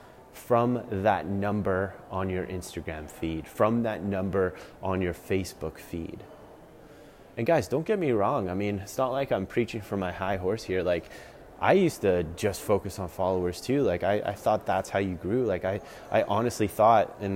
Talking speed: 190 wpm